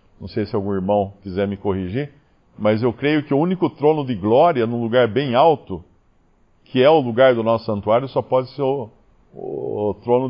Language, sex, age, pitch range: Portuguese, male, 50-69, 110-155 Hz